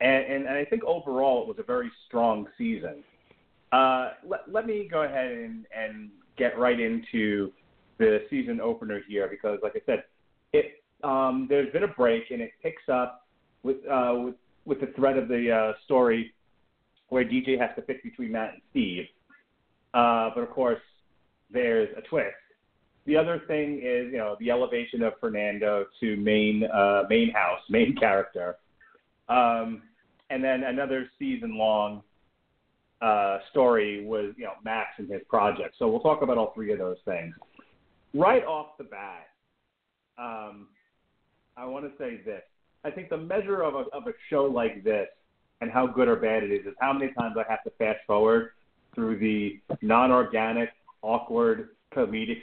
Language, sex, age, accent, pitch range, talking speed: English, male, 30-49, American, 110-160 Hz, 165 wpm